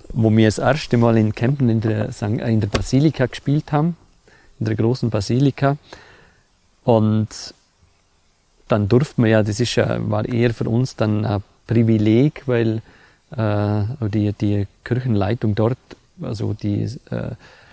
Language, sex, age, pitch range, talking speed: German, male, 40-59, 105-120 Hz, 140 wpm